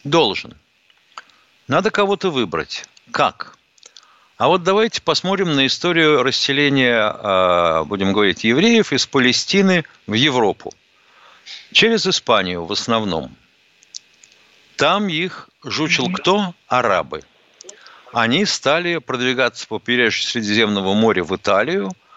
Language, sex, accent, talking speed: Russian, male, native, 95 wpm